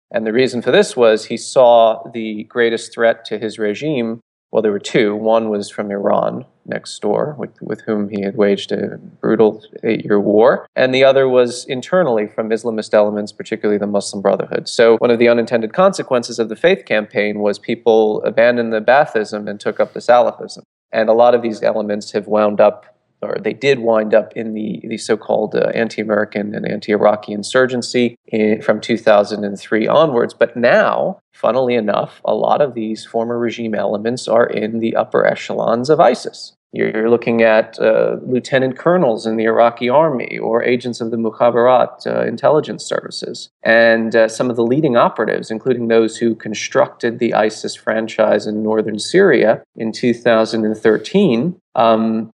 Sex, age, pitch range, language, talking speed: male, 30-49, 105-120 Hz, English, 170 wpm